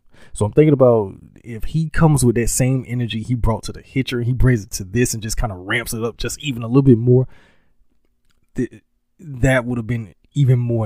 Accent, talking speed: American, 225 wpm